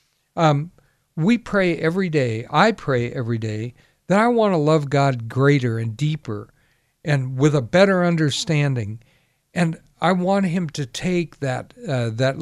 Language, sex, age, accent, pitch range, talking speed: English, male, 60-79, American, 125-160 Hz, 150 wpm